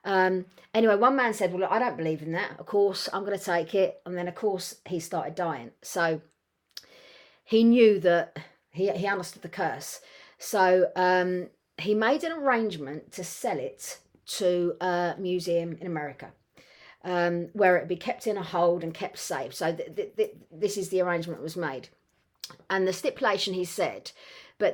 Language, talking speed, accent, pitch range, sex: English, 185 wpm, British, 175-215 Hz, female